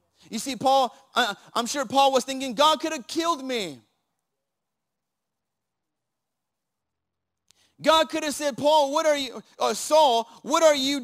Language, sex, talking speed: English, male, 135 wpm